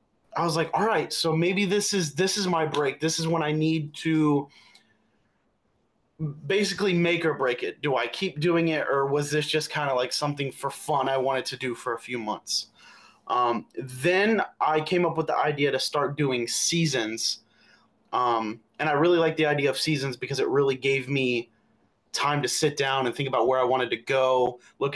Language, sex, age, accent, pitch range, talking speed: English, male, 30-49, American, 135-170 Hz, 205 wpm